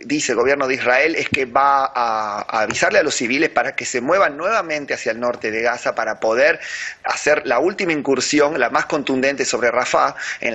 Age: 30-49